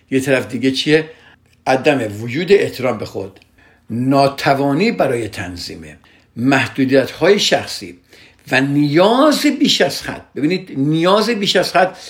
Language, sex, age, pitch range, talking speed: Persian, male, 60-79, 115-150 Hz, 120 wpm